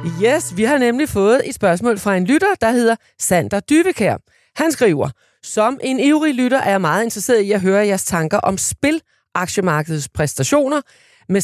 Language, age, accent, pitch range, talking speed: Danish, 30-49, native, 160-240 Hz, 175 wpm